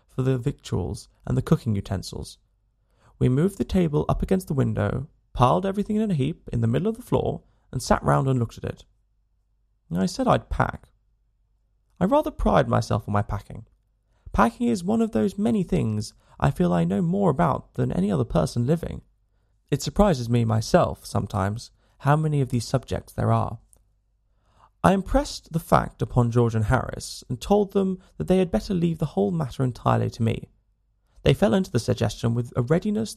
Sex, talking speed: male, 190 wpm